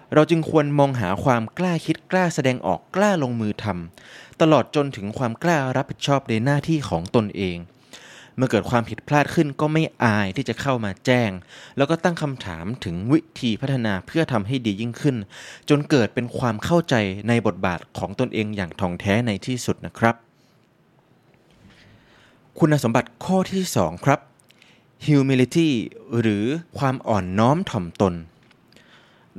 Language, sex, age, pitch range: Thai, male, 20-39, 105-145 Hz